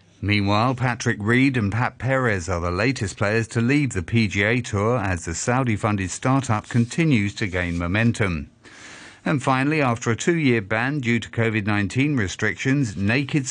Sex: male